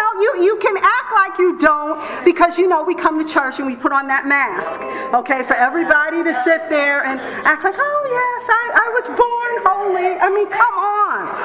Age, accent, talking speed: 40-59, American, 210 wpm